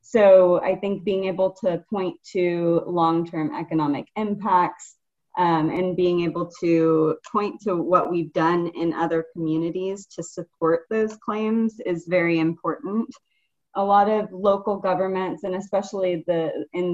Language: English